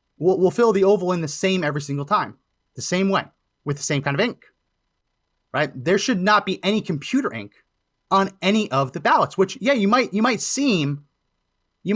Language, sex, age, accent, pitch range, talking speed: English, male, 30-49, American, 130-195 Hz, 205 wpm